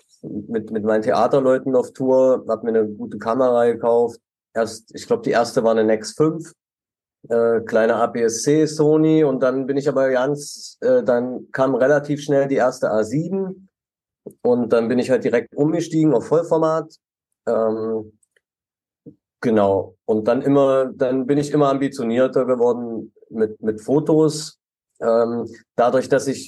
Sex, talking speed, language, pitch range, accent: male, 145 wpm, German, 110-140 Hz, German